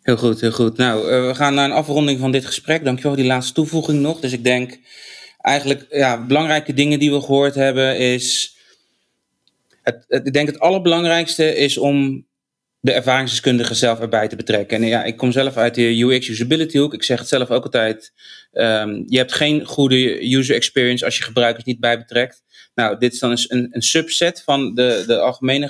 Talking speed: 200 wpm